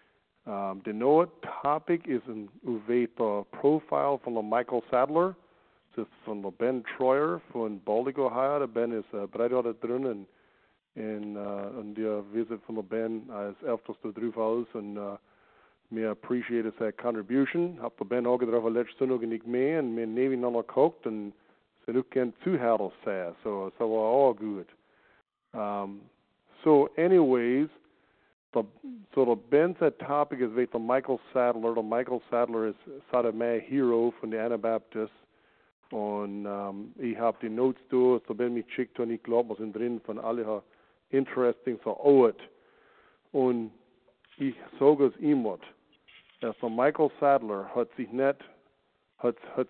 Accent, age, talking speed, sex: American, 50-69, 150 wpm, male